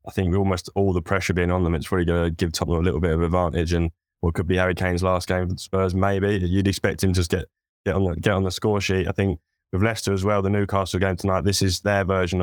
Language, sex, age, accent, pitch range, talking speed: English, male, 10-29, British, 85-100 Hz, 290 wpm